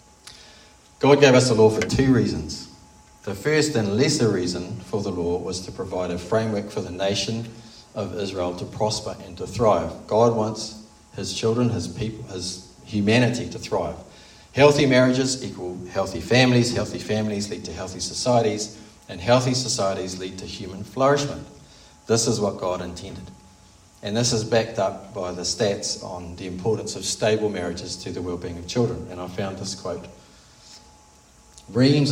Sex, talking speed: male, 165 wpm